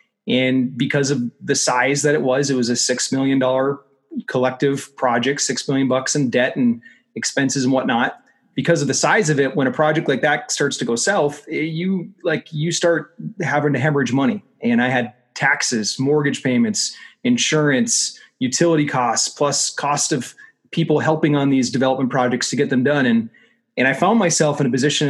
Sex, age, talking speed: male, 30-49, 185 wpm